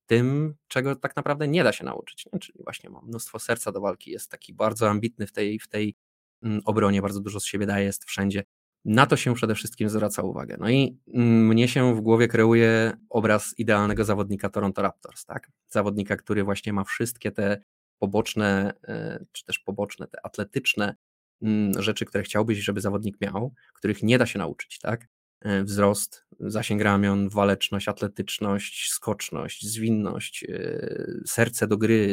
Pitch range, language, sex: 100-115 Hz, Polish, male